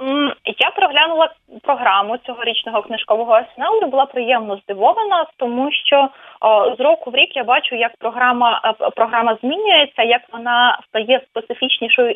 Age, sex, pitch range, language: 20-39, female, 210-260 Hz, English